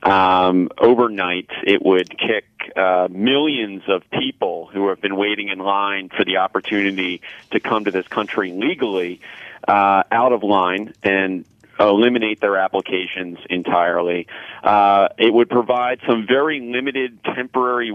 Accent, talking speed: American, 135 wpm